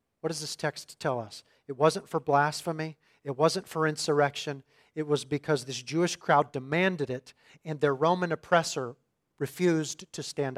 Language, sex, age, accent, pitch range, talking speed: English, male, 40-59, American, 130-165 Hz, 165 wpm